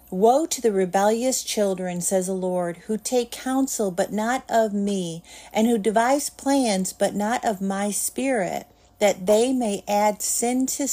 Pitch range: 190-230 Hz